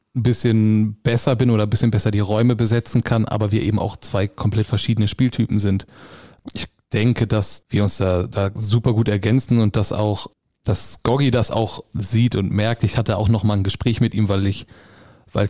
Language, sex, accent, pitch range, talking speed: German, male, German, 105-120 Hz, 200 wpm